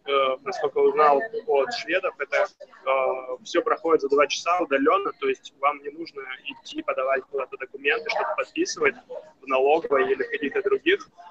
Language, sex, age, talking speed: Russian, male, 20-39, 155 wpm